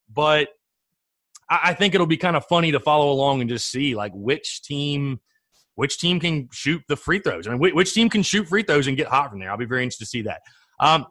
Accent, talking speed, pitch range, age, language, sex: American, 245 wpm, 125-175 Hz, 30-49, English, male